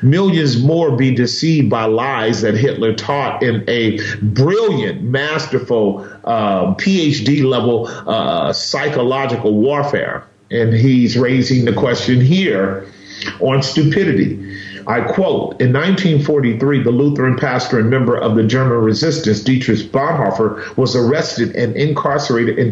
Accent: American